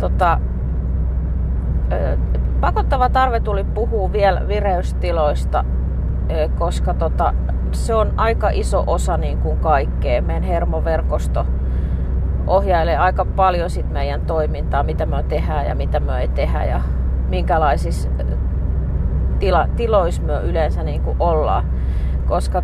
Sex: female